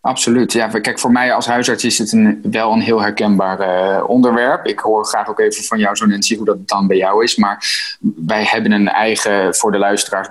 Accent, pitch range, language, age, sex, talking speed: Dutch, 100-125 Hz, Dutch, 20-39, male, 220 wpm